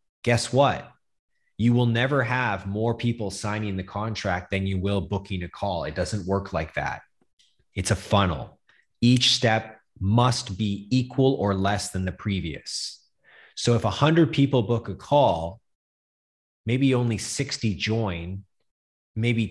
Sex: male